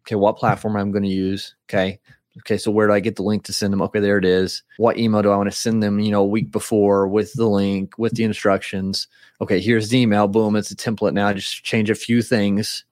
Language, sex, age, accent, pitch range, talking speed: English, male, 30-49, American, 105-120 Hz, 265 wpm